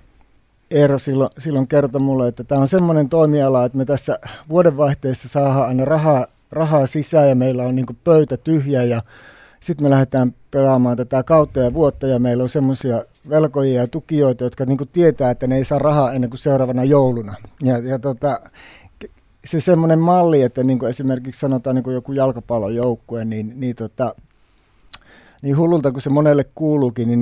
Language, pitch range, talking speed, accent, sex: Finnish, 120-140 Hz, 170 wpm, native, male